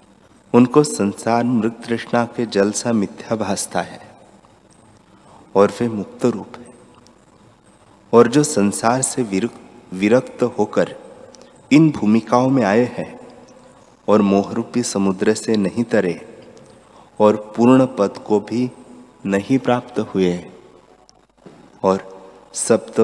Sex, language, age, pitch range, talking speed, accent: male, Hindi, 30-49, 100-120 Hz, 105 wpm, native